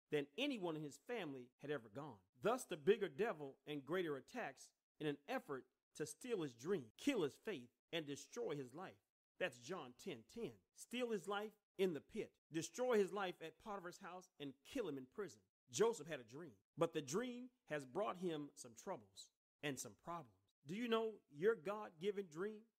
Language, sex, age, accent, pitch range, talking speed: English, male, 40-59, American, 140-210 Hz, 190 wpm